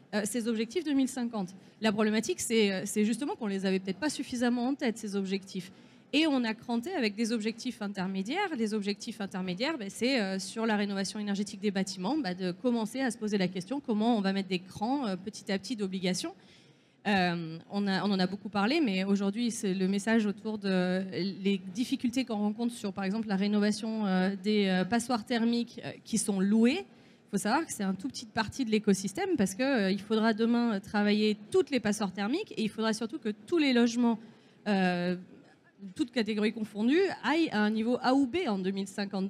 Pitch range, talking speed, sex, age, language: 205-275 Hz, 205 wpm, female, 20-39, French